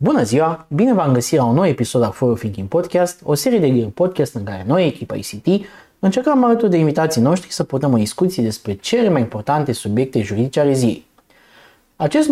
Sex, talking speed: male, 195 wpm